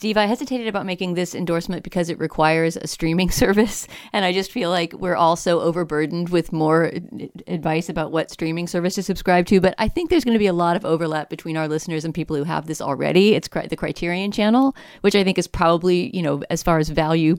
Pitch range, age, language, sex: 155-185 Hz, 40-59, English, female